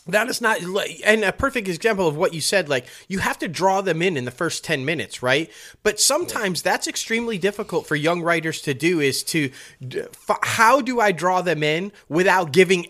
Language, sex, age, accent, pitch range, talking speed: English, male, 30-49, American, 140-195 Hz, 205 wpm